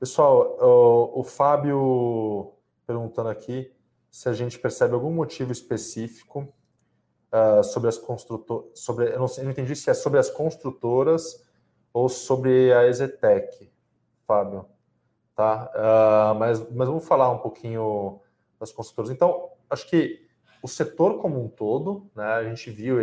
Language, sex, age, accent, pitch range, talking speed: Portuguese, male, 20-39, Brazilian, 110-135 Hz, 130 wpm